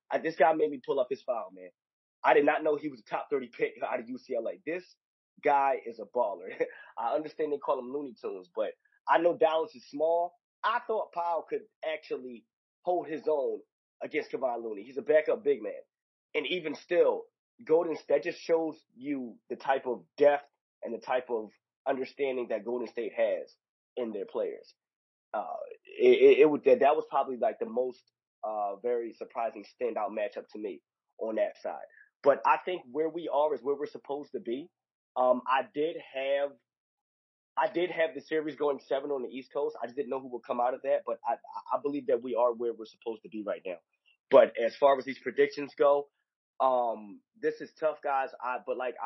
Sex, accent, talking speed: male, American, 210 wpm